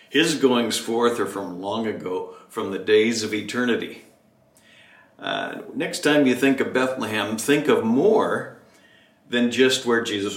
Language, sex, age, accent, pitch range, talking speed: English, male, 60-79, American, 115-140 Hz, 150 wpm